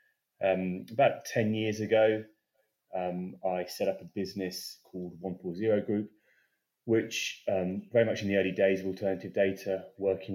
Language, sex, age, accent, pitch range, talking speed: English, male, 30-49, British, 85-100 Hz, 160 wpm